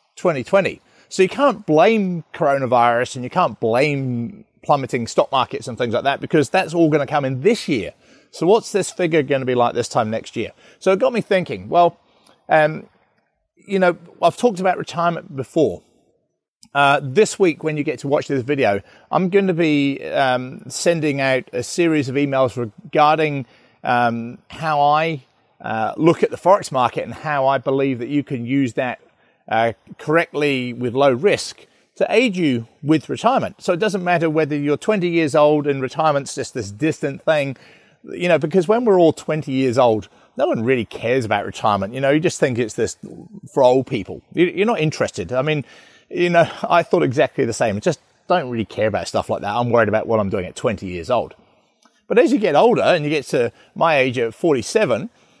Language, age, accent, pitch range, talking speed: English, 30-49, British, 130-175 Hz, 200 wpm